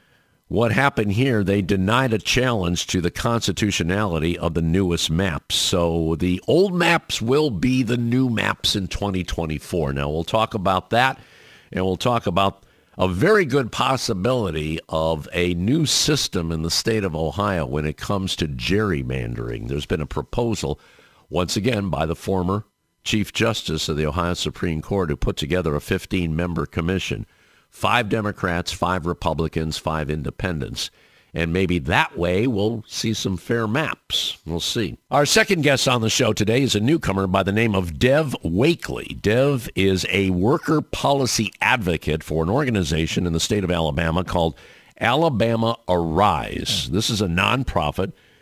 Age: 50-69